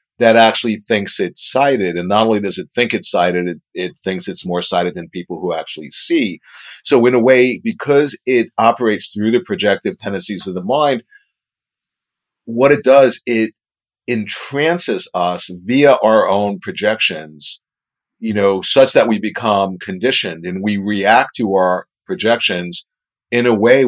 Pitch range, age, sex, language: 95-125 Hz, 50-69, male, English